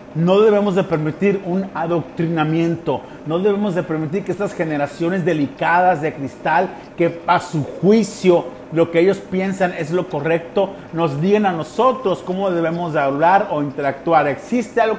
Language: Spanish